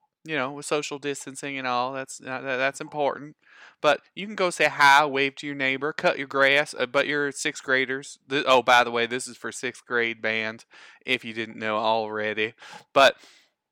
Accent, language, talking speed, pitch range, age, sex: American, English, 195 wpm, 115-145 Hz, 20-39, male